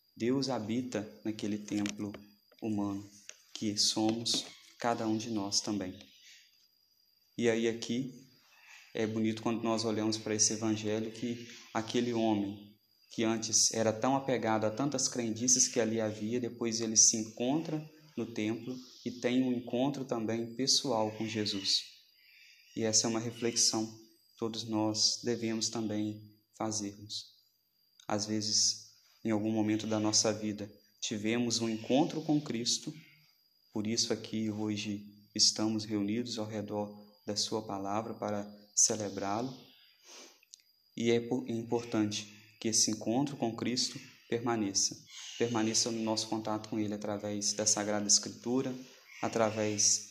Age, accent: 20-39, Brazilian